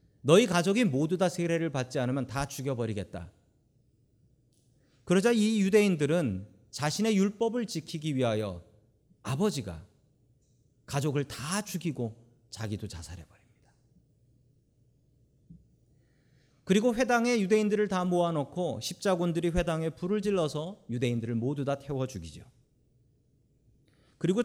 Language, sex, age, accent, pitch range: Korean, male, 40-59, native, 125-195 Hz